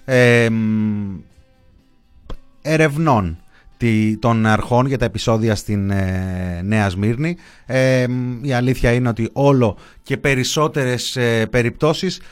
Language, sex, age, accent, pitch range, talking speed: Greek, male, 30-49, native, 110-135 Hz, 85 wpm